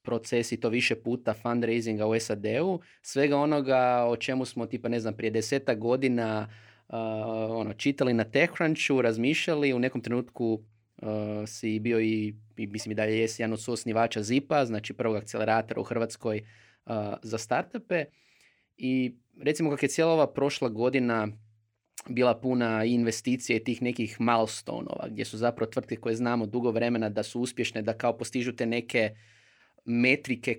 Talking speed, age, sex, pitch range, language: 155 wpm, 20-39, male, 110-135 Hz, Croatian